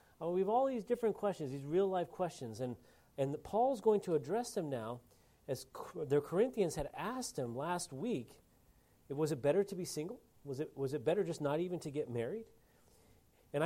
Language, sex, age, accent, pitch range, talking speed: English, male, 40-59, American, 135-190 Hz, 200 wpm